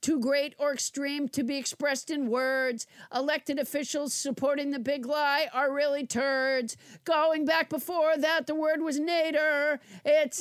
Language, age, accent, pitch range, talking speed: English, 50-69, American, 265-295 Hz, 155 wpm